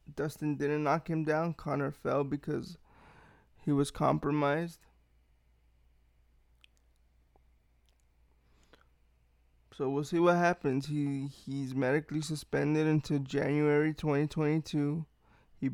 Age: 20-39